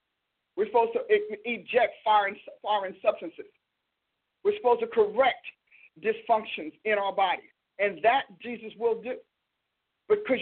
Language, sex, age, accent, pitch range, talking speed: English, male, 50-69, American, 235-300 Hz, 120 wpm